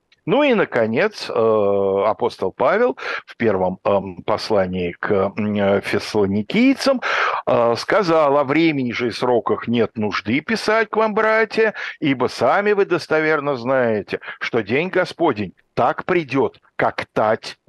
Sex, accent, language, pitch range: male, native, Russian, 105-135 Hz